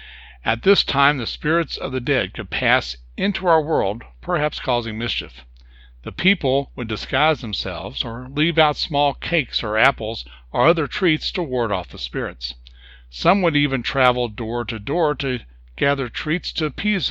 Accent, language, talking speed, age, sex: American, English, 170 wpm, 60-79, male